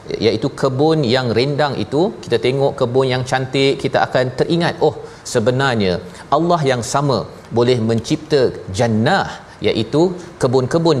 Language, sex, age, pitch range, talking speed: Malayalam, male, 40-59, 110-140 Hz, 125 wpm